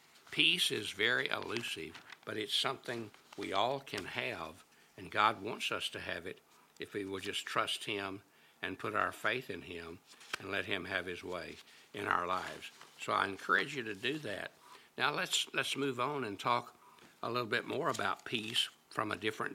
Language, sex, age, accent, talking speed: English, male, 60-79, American, 190 wpm